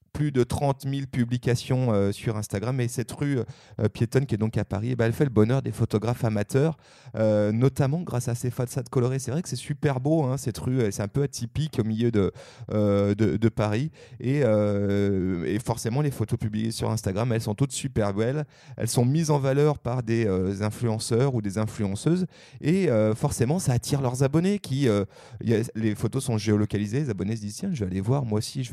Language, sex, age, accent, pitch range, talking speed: French, male, 30-49, French, 110-135 Hz, 225 wpm